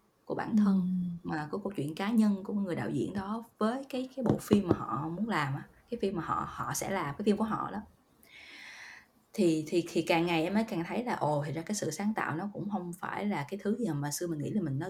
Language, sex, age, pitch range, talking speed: Vietnamese, female, 20-39, 150-195 Hz, 270 wpm